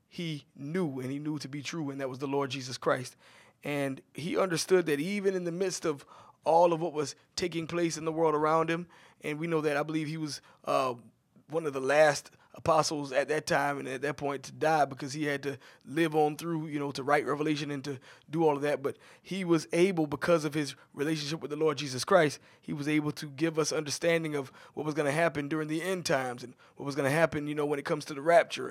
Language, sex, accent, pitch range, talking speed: English, male, American, 145-165 Hz, 250 wpm